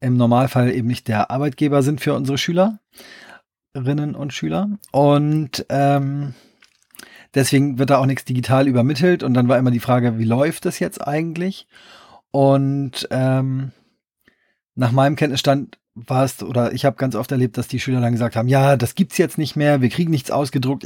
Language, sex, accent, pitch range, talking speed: German, male, German, 125-145 Hz, 180 wpm